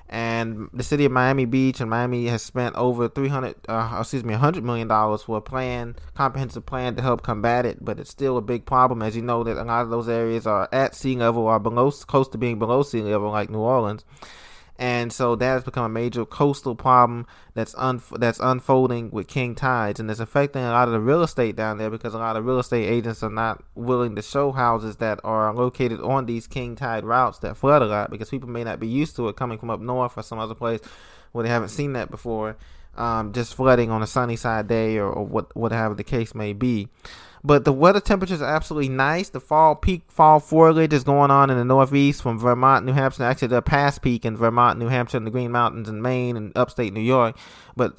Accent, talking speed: American, 240 wpm